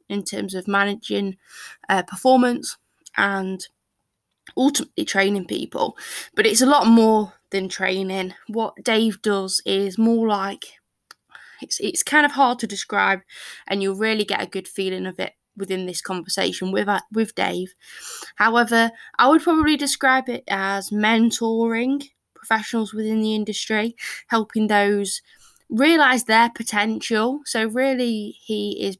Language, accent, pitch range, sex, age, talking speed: English, British, 195-235 Hz, female, 10-29, 140 wpm